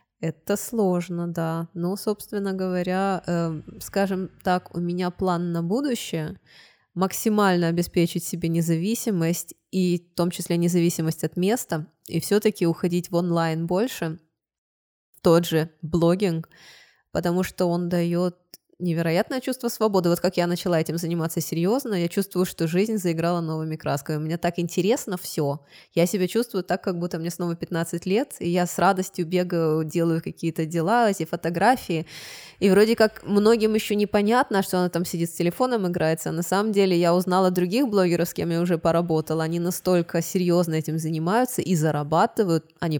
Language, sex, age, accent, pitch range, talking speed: Russian, female, 20-39, native, 165-190 Hz, 155 wpm